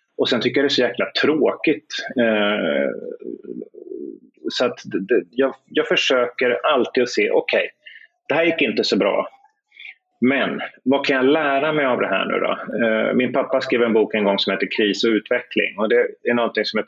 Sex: male